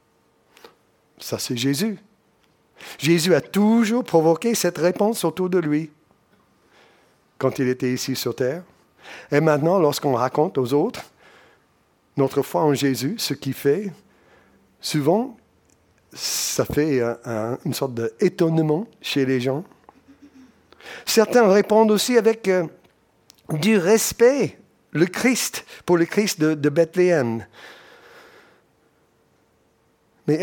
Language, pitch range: French, 130-190 Hz